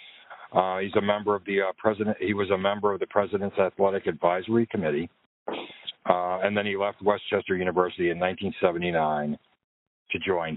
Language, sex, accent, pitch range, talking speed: English, male, American, 90-120 Hz, 165 wpm